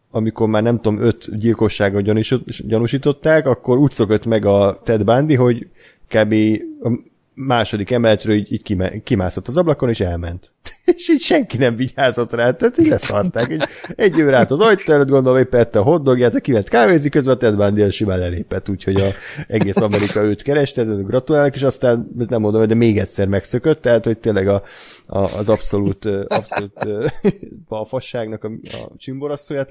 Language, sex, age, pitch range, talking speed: Hungarian, male, 30-49, 100-125 Hz, 165 wpm